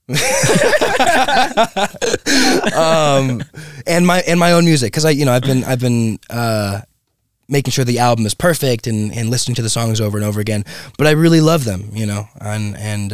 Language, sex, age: English, male, 20-39